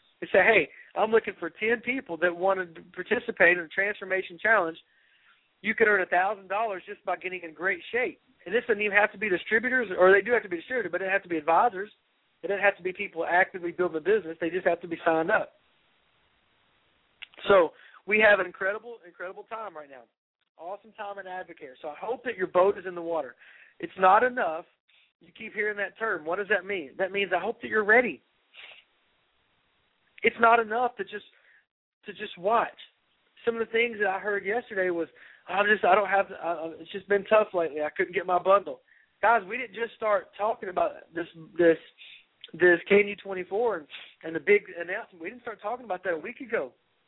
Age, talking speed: 40-59, 210 wpm